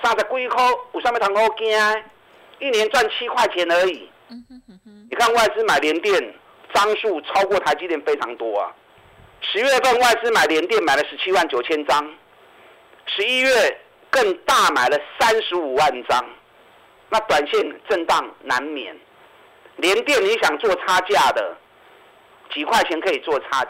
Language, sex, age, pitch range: Chinese, male, 50-69, 180-255 Hz